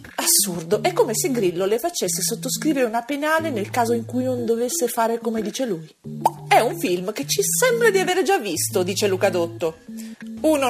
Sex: female